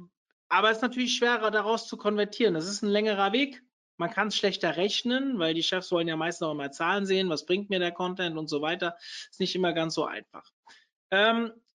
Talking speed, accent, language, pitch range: 225 wpm, German, German, 180-220 Hz